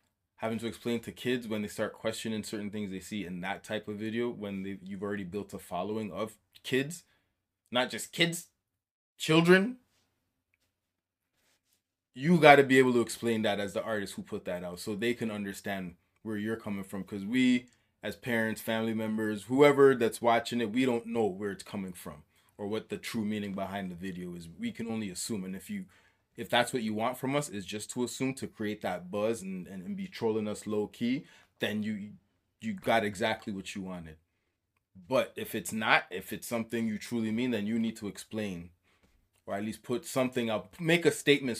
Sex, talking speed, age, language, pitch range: male, 205 wpm, 20-39, English, 100-120 Hz